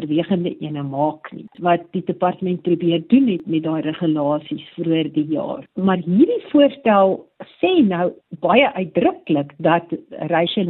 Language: English